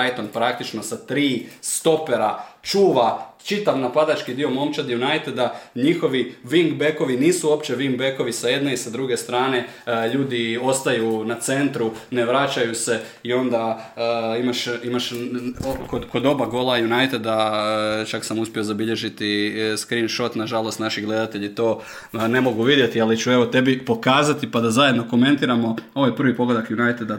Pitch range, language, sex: 110-125 Hz, Croatian, male